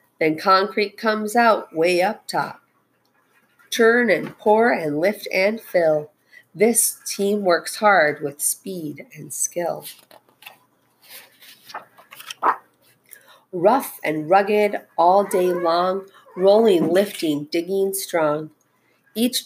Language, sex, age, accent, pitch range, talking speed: English, female, 40-59, American, 155-220 Hz, 100 wpm